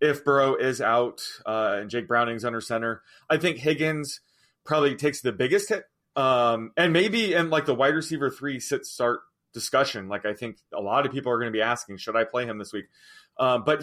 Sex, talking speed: male, 215 wpm